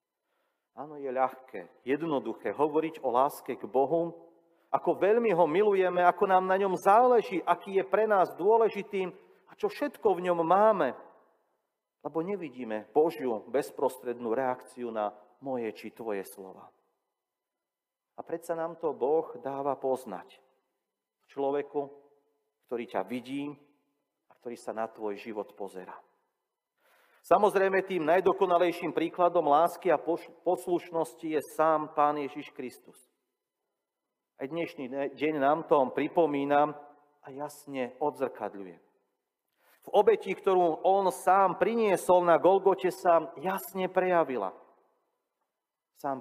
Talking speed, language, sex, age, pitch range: 115 wpm, Slovak, male, 40-59, 140-185 Hz